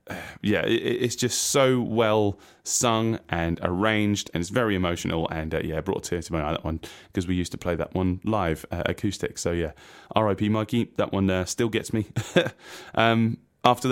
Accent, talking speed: British, 195 wpm